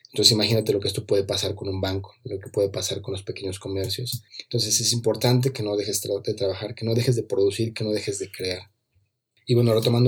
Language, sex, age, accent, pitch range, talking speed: Spanish, male, 30-49, Mexican, 100-120 Hz, 230 wpm